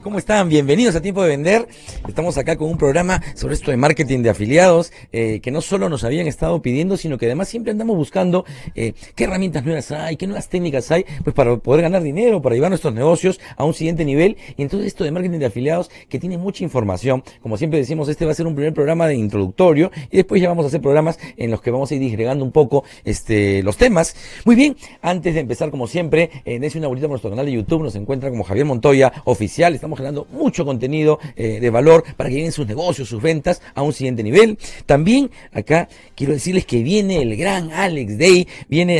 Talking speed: 225 wpm